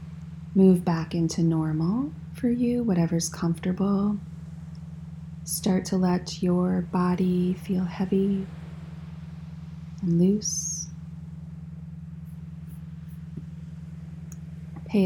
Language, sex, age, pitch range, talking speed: English, female, 30-49, 160-180 Hz, 70 wpm